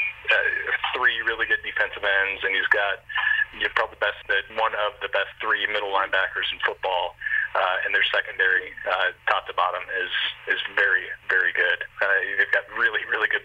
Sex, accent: male, American